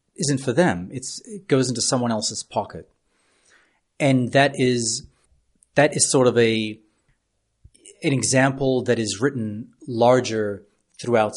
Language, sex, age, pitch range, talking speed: Spanish, male, 30-49, 110-135 Hz, 130 wpm